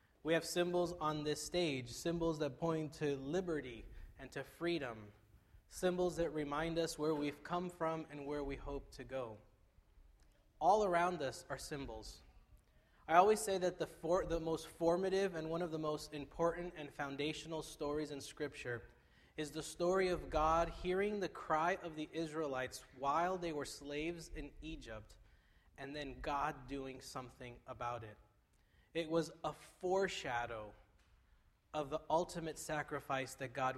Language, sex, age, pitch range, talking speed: English, male, 20-39, 130-165 Hz, 155 wpm